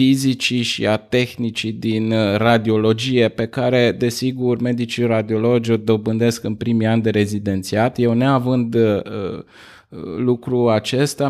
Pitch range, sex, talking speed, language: 110-125 Hz, male, 120 wpm, Romanian